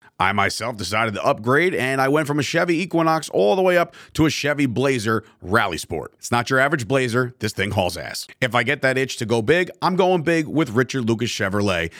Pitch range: 115-155 Hz